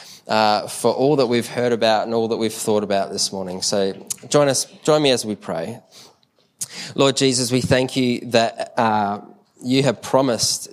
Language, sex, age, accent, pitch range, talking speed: English, male, 20-39, Australian, 105-125 Hz, 185 wpm